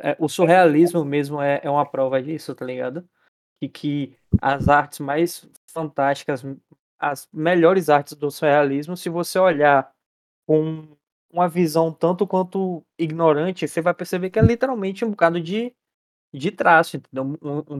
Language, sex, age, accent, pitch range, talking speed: English, male, 20-39, Brazilian, 145-175 Hz, 140 wpm